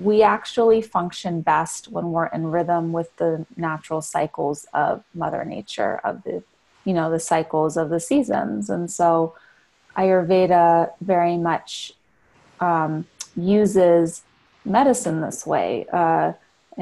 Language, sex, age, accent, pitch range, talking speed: English, female, 30-49, American, 170-210 Hz, 125 wpm